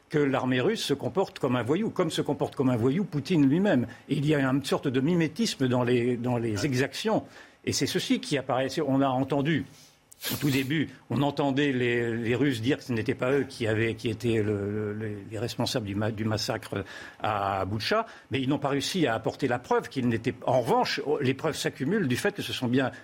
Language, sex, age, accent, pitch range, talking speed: French, male, 50-69, French, 120-145 Hz, 225 wpm